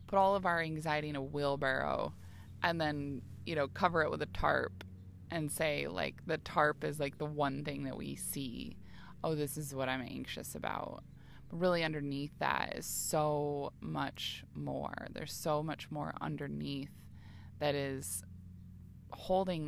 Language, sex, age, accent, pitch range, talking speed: English, female, 20-39, American, 95-150 Hz, 160 wpm